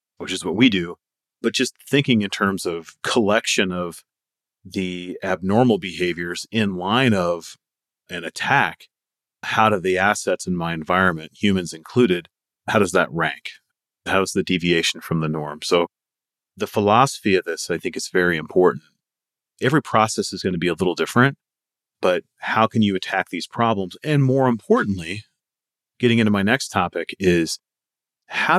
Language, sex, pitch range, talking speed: English, male, 85-100 Hz, 160 wpm